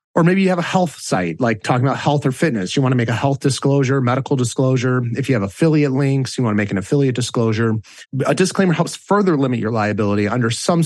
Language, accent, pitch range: English, American, 125-170 Hz